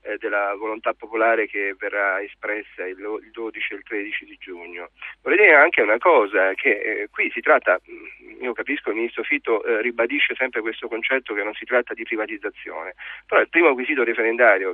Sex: male